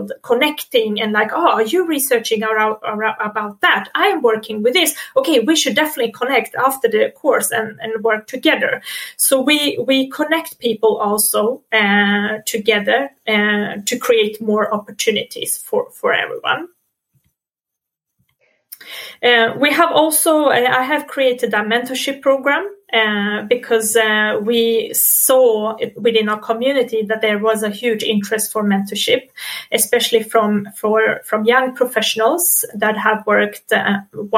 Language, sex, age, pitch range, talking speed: Swedish, female, 30-49, 215-260 Hz, 140 wpm